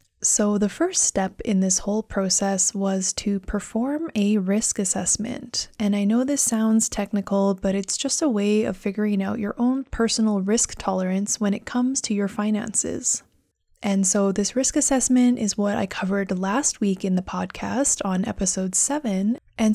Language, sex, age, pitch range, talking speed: English, female, 20-39, 195-240 Hz, 175 wpm